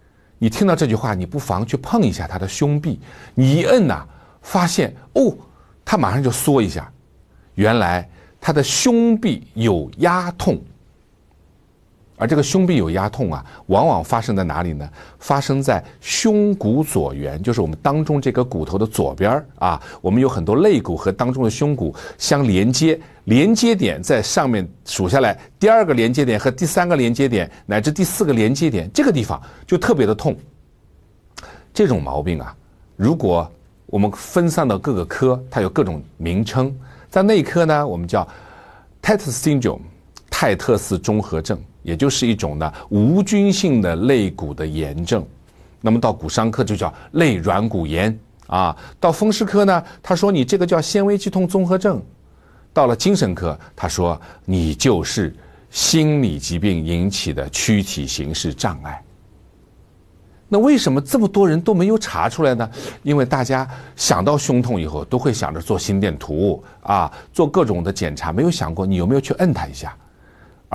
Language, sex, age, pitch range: Chinese, male, 50-69, 90-150 Hz